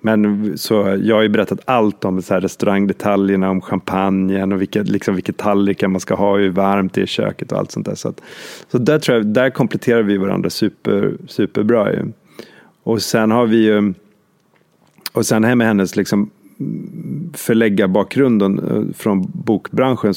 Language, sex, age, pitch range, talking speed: Swedish, male, 30-49, 95-110 Hz, 170 wpm